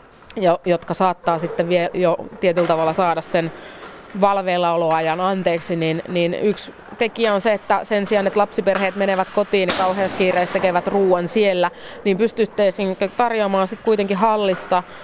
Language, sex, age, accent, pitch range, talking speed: Finnish, female, 20-39, native, 180-215 Hz, 150 wpm